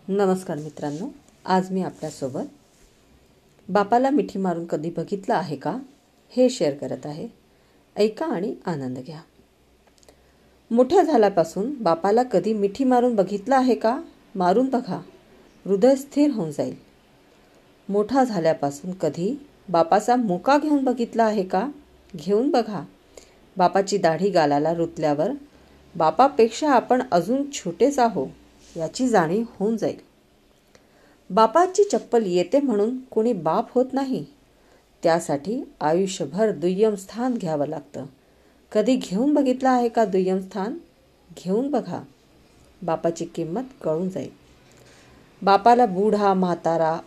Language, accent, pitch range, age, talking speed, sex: Hindi, native, 175-250 Hz, 50-69, 95 wpm, female